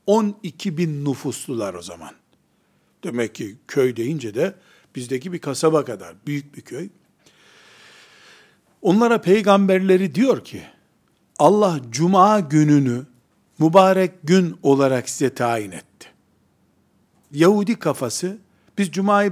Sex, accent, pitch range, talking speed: male, native, 145-195 Hz, 105 wpm